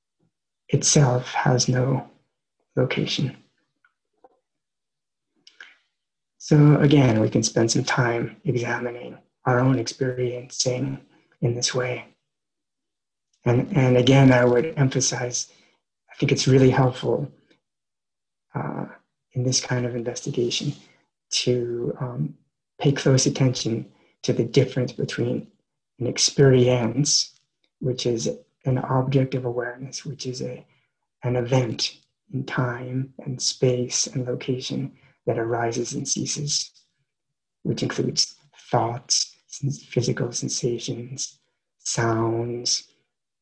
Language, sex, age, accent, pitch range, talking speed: English, male, 30-49, American, 120-135 Hz, 100 wpm